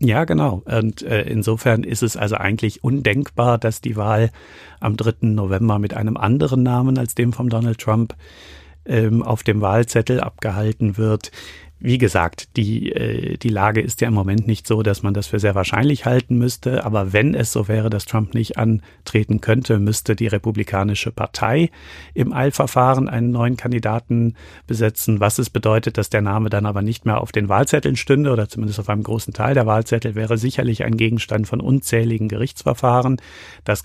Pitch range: 105-120 Hz